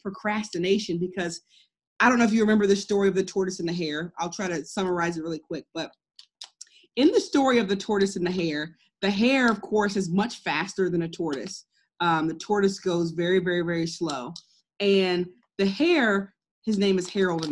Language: English